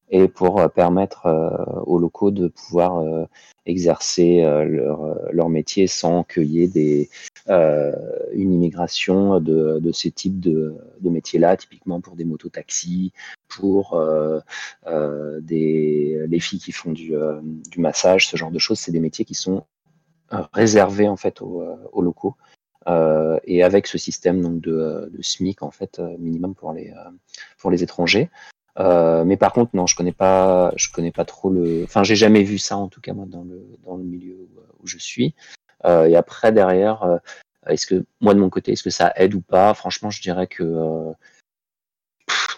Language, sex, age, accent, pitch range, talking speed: French, male, 30-49, French, 80-95 Hz, 185 wpm